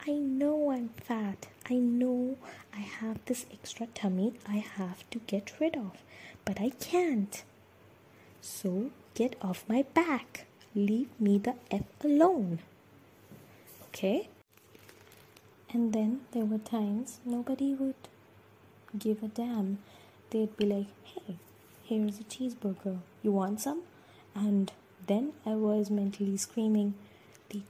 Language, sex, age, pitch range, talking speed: English, female, 20-39, 205-255 Hz, 125 wpm